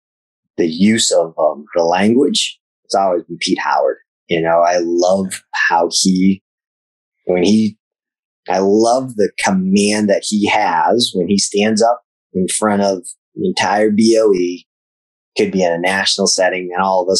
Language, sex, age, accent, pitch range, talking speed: English, male, 30-49, American, 95-125 Hz, 160 wpm